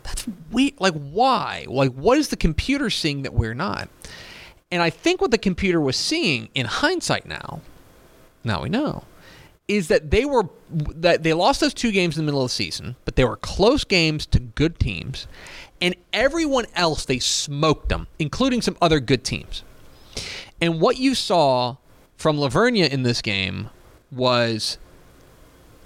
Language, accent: English, American